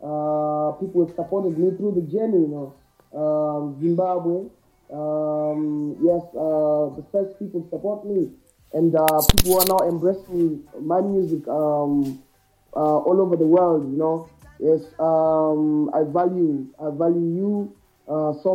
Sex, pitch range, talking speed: male, 150-180 Hz, 140 wpm